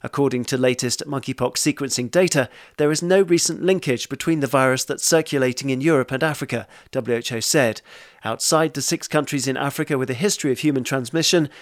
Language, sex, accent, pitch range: English, male, British, 130-165 Hz